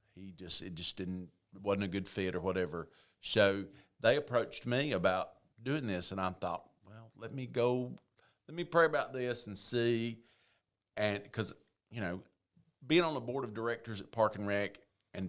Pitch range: 95-115 Hz